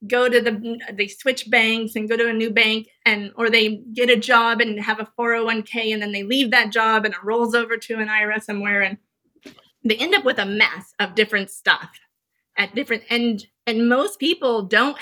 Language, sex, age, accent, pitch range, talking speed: English, female, 30-49, American, 210-250 Hz, 210 wpm